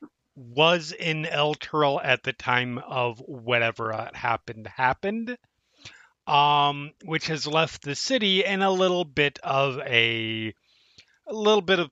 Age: 30-49